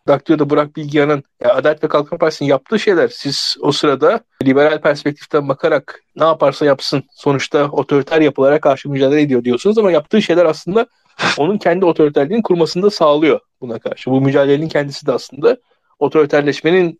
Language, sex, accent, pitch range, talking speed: Turkish, male, native, 145-195 Hz, 150 wpm